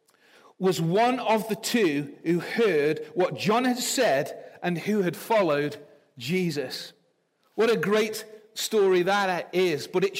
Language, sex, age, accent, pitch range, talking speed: English, male, 40-59, British, 200-265 Hz, 140 wpm